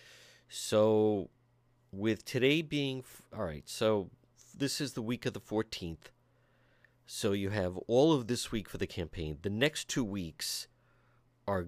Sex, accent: male, American